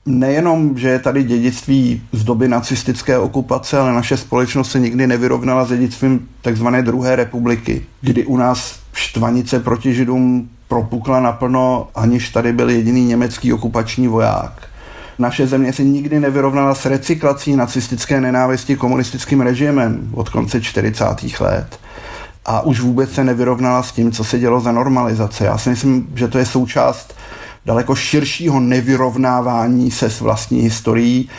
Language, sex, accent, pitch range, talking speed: Czech, male, native, 120-135 Hz, 145 wpm